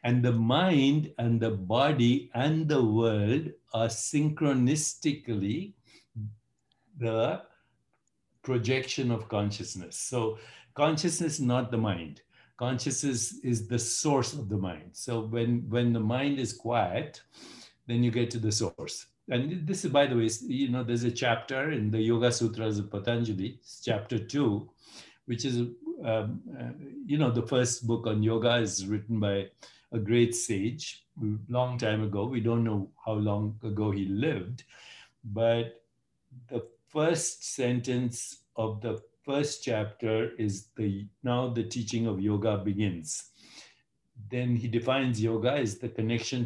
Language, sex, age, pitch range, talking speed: English, male, 60-79, 110-125 Hz, 140 wpm